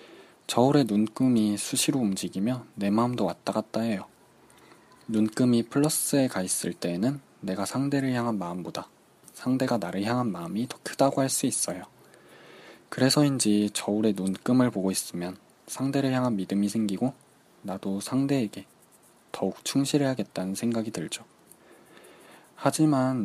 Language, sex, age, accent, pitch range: Korean, male, 20-39, native, 100-130 Hz